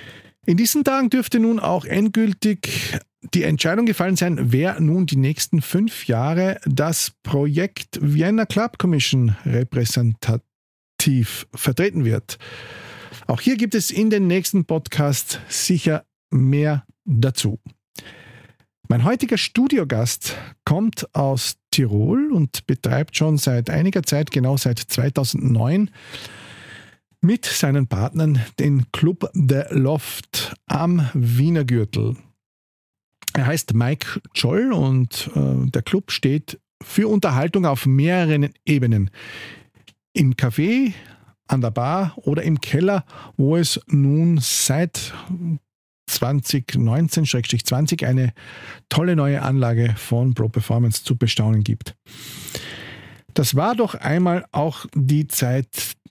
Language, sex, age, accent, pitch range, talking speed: German, male, 50-69, Austrian, 120-170 Hz, 110 wpm